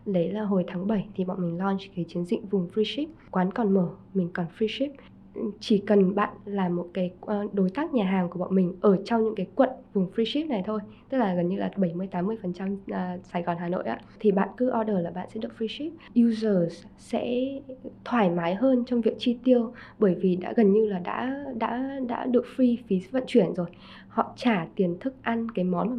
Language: Vietnamese